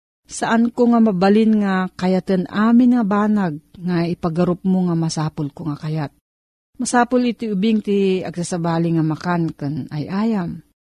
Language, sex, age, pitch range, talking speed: Filipino, female, 40-59, 165-220 Hz, 150 wpm